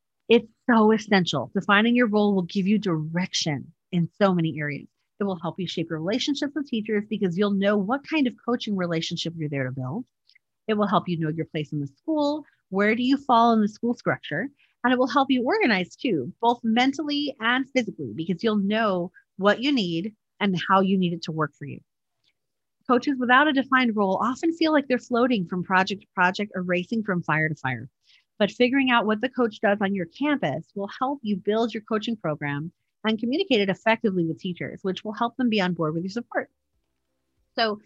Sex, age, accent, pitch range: female, 40-59, American, 180-245 Hz